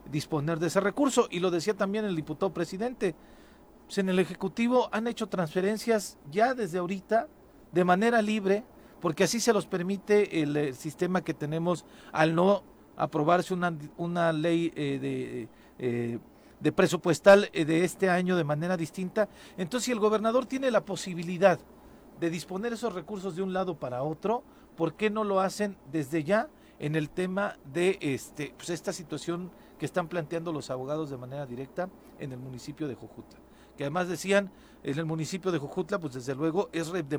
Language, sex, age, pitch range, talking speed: Spanish, male, 40-59, 150-195 Hz, 175 wpm